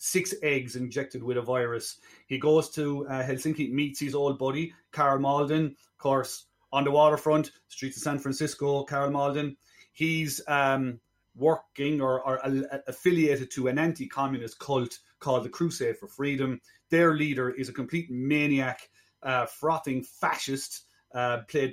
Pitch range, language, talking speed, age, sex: 130-150 Hz, English, 150 wpm, 30-49, male